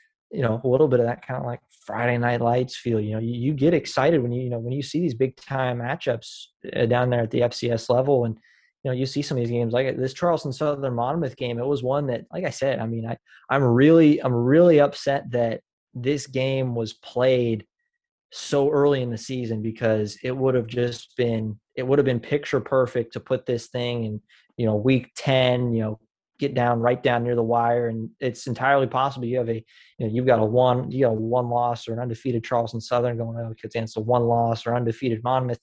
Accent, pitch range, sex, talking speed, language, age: American, 120-140 Hz, male, 230 wpm, English, 20-39